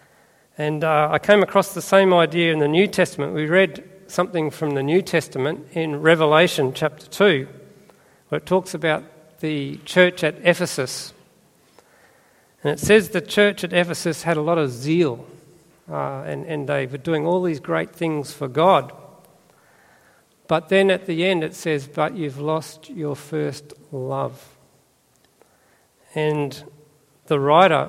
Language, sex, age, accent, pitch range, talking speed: English, male, 40-59, Australian, 150-185 Hz, 155 wpm